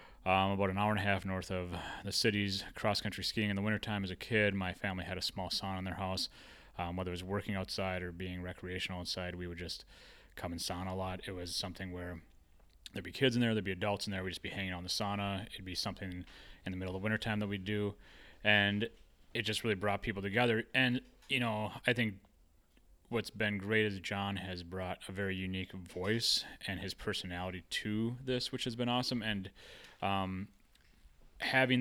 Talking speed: 215 wpm